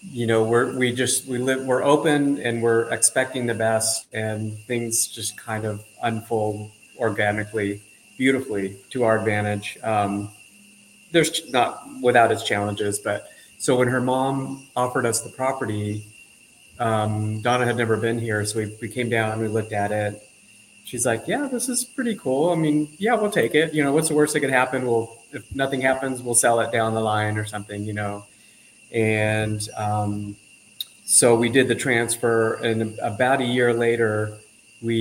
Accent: American